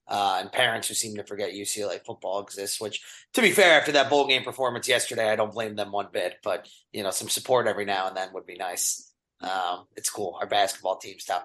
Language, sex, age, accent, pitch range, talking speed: English, male, 30-49, American, 120-175 Hz, 235 wpm